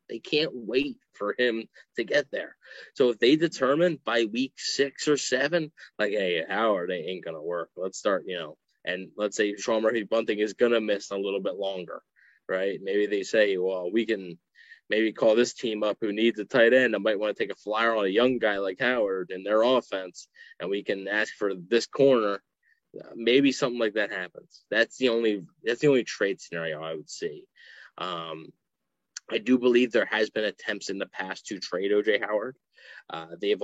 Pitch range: 100-140 Hz